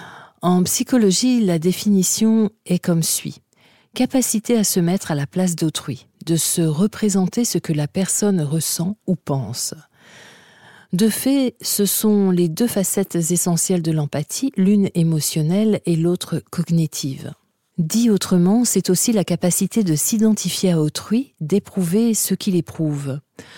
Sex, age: female, 40-59